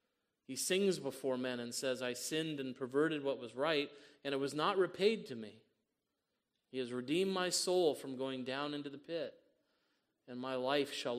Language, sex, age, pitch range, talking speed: English, male, 30-49, 125-150 Hz, 190 wpm